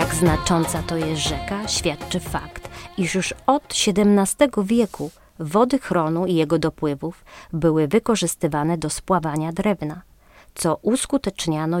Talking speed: 120 wpm